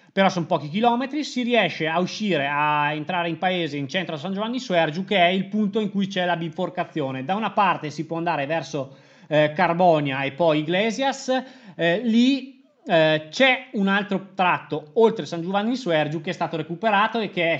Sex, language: male, Italian